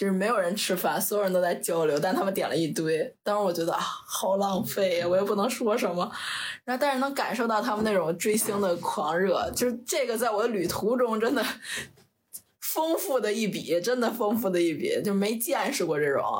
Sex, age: female, 20-39